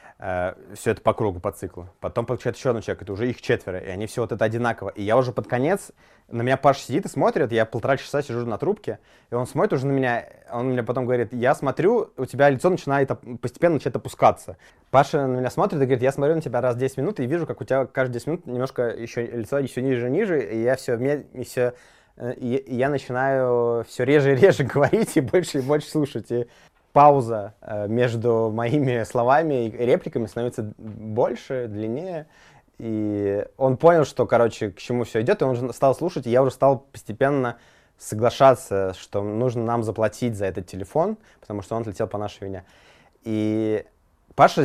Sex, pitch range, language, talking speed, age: male, 110-135 Hz, Russian, 200 wpm, 20-39